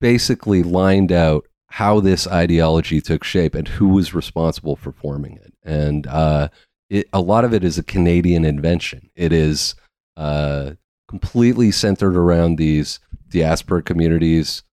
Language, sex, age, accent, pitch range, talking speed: English, male, 30-49, American, 85-110 Hz, 140 wpm